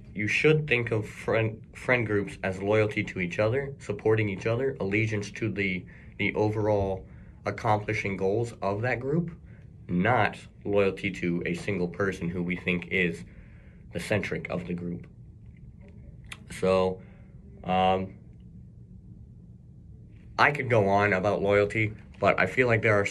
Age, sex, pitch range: 30-49, male, 90-110 Hz